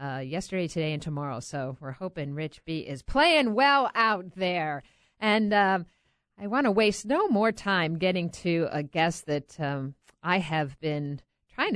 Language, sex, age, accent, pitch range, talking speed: English, female, 50-69, American, 155-235 Hz, 175 wpm